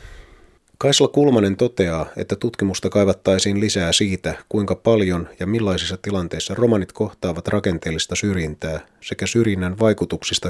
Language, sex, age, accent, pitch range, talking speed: Finnish, male, 30-49, native, 85-100 Hz, 115 wpm